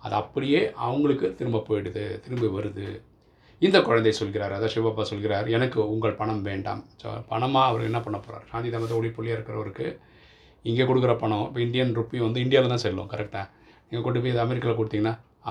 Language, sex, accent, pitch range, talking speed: Tamil, male, native, 105-115 Hz, 165 wpm